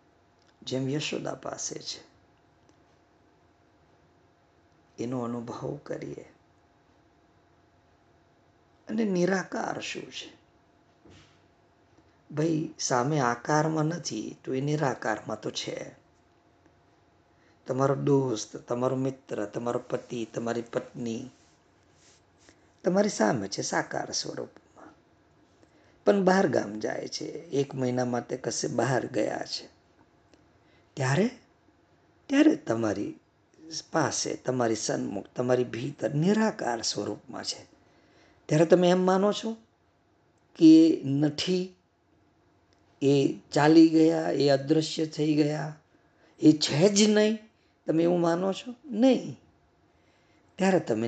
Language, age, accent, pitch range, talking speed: Gujarati, 50-69, native, 120-170 Hz, 65 wpm